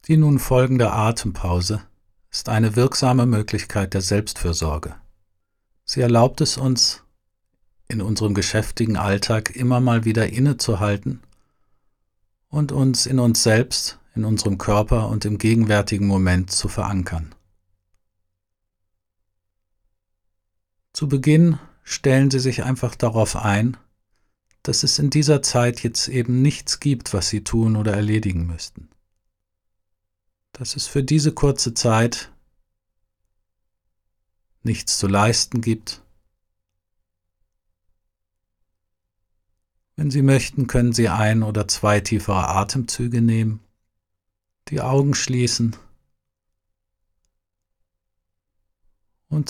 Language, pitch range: German, 90-120 Hz